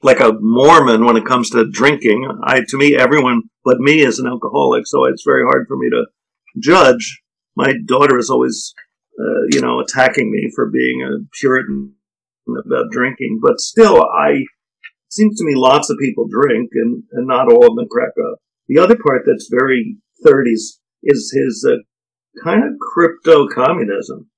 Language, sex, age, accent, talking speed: English, male, 50-69, American, 175 wpm